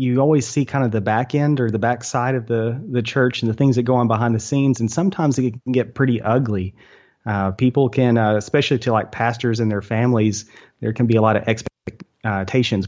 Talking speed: 235 wpm